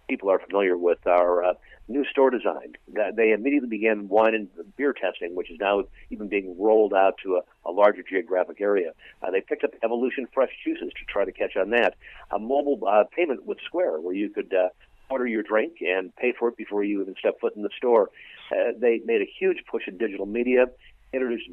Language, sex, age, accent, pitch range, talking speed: English, male, 50-69, American, 100-140 Hz, 215 wpm